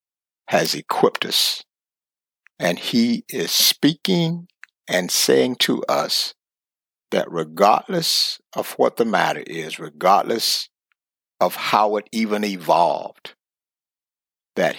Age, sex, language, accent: 60-79, male, English, American